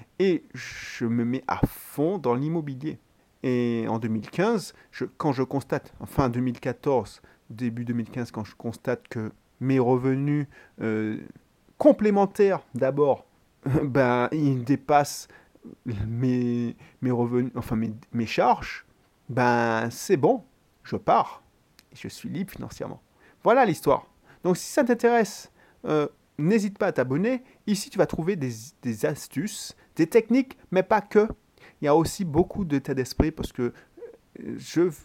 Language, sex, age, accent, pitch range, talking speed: French, male, 30-49, French, 120-180 Hz, 135 wpm